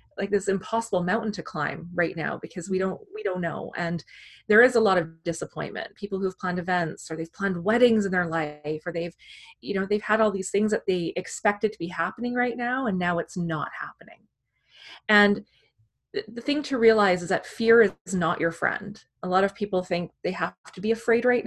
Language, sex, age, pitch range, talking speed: English, female, 30-49, 175-225 Hz, 215 wpm